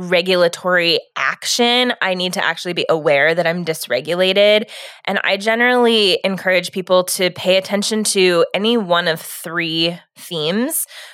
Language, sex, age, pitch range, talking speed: English, female, 20-39, 170-200 Hz, 135 wpm